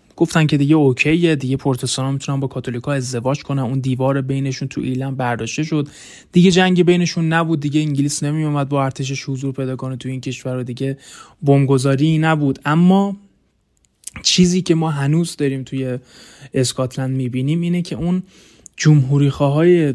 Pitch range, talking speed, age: 130-160 Hz, 145 wpm, 20-39